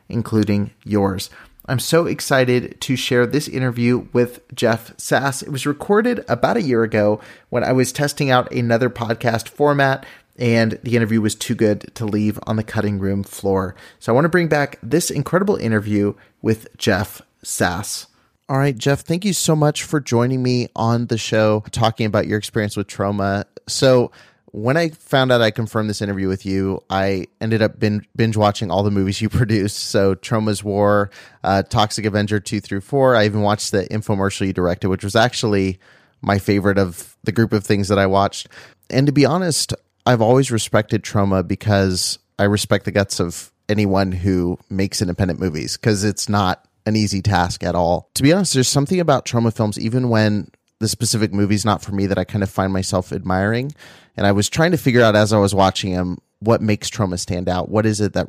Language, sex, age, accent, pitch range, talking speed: English, male, 30-49, American, 100-120 Hz, 195 wpm